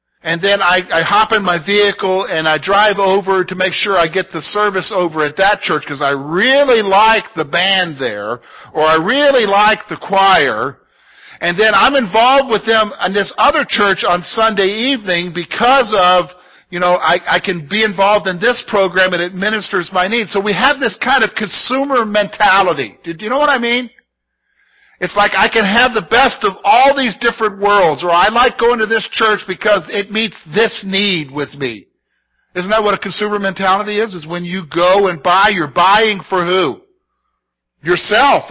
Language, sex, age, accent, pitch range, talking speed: English, male, 50-69, American, 180-235 Hz, 195 wpm